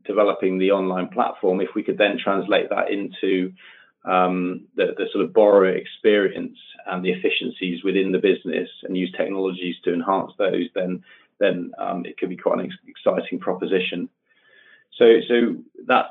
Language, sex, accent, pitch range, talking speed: English, male, British, 90-110 Hz, 160 wpm